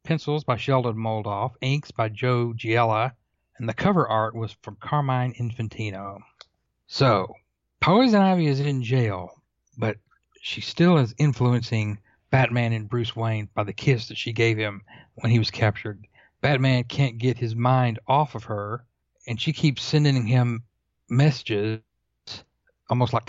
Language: English